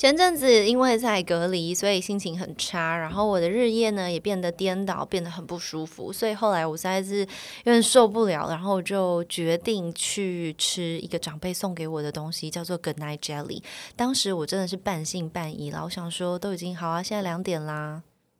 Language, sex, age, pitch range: Chinese, female, 20-39, 170-225 Hz